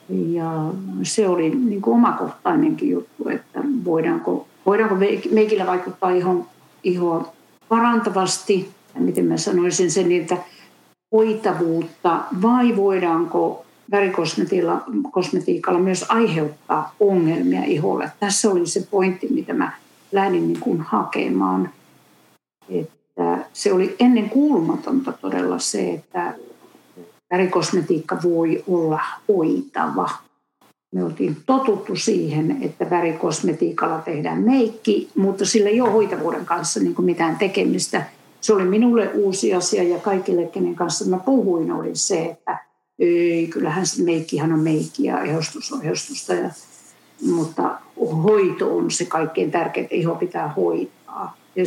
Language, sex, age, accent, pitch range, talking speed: Finnish, female, 50-69, native, 170-215 Hz, 110 wpm